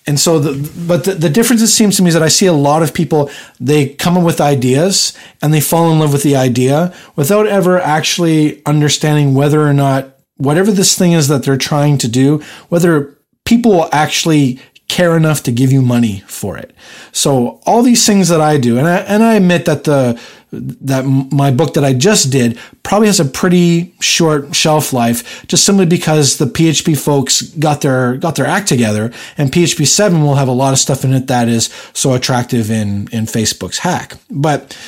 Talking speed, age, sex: 205 wpm, 40-59, male